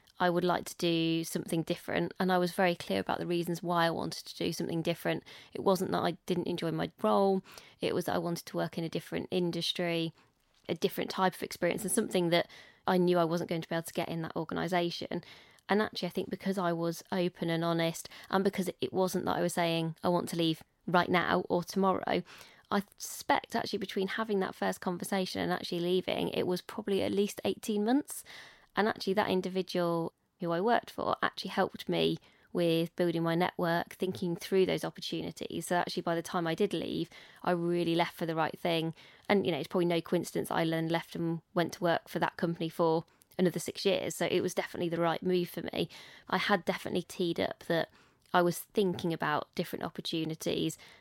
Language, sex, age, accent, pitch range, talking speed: English, female, 20-39, British, 170-185 Hz, 215 wpm